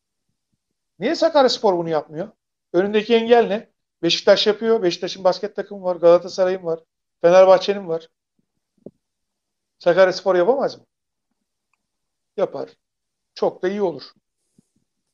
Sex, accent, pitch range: male, native, 160-190 Hz